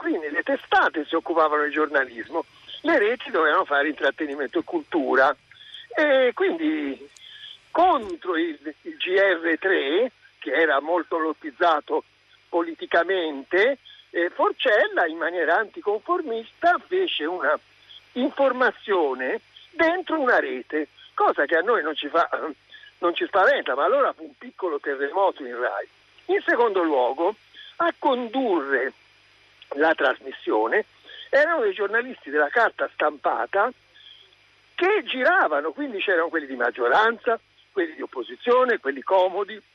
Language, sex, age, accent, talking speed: Italian, male, 60-79, native, 120 wpm